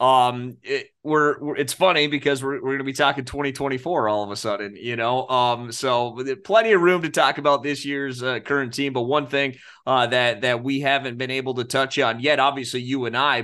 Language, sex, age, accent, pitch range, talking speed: English, male, 30-49, American, 115-140 Hz, 230 wpm